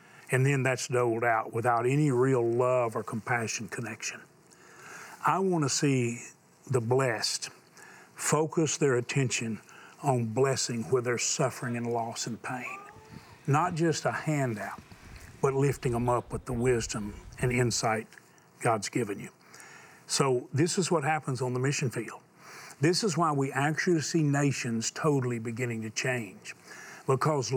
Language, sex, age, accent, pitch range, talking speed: English, male, 50-69, American, 120-150 Hz, 145 wpm